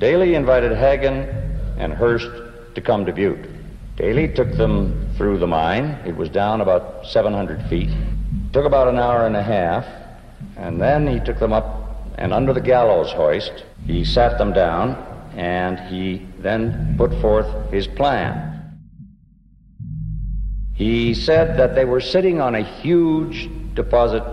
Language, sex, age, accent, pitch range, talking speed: English, male, 60-79, American, 105-145 Hz, 150 wpm